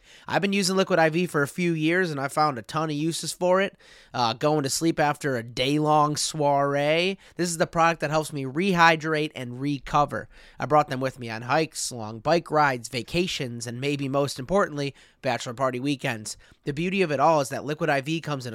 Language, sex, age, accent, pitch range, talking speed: English, male, 30-49, American, 130-165 Hz, 210 wpm